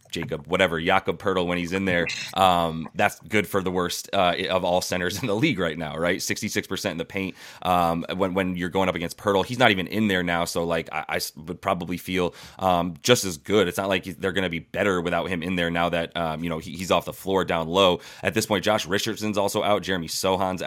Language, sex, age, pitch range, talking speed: English, male, 20-39, 85-100 Hz, 255 wpm